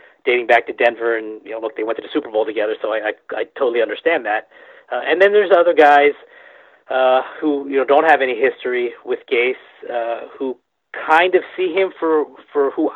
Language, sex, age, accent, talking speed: English, male, 30-49, American, 220 wpm